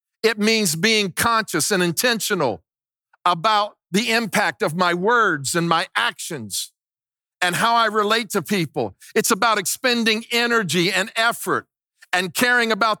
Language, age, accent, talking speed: English, 50-69, American, 140 wpm